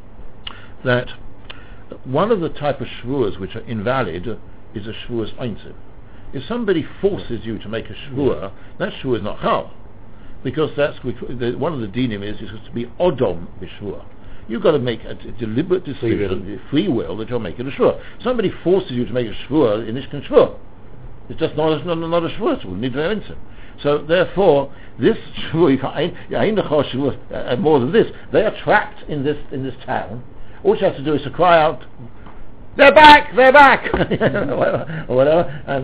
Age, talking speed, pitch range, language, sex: 60-79, 180 wpm, 100-140 Hz, English, male